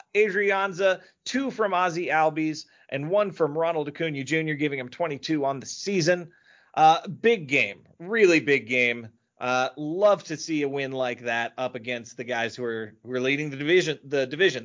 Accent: American